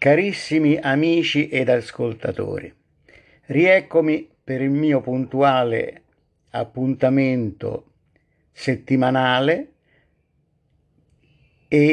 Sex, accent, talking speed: male, native, 60 wpm